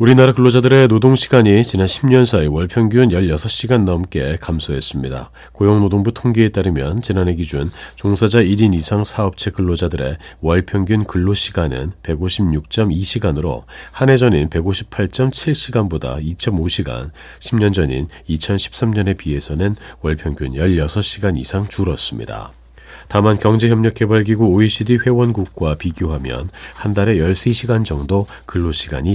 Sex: male